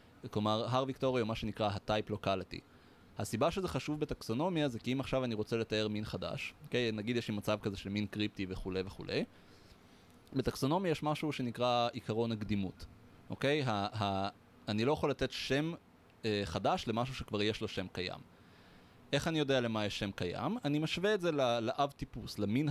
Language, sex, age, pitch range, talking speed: Hebrew, male, 20-39, 105-135 Hz, 180 wpm